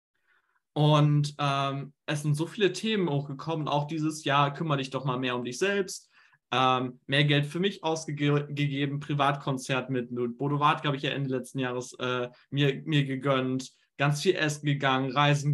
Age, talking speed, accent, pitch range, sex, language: 20-39, 170 wpm, German, 130-160 Hz, male, German